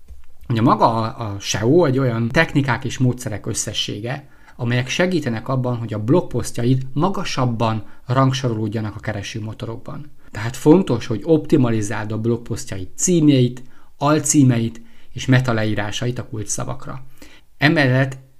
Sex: male